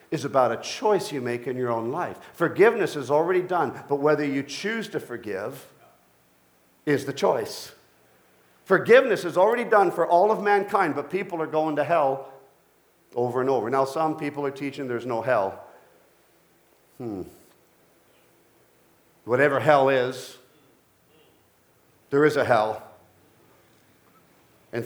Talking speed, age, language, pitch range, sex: 140 wpm, 50-69, English, 125-155 Hz, male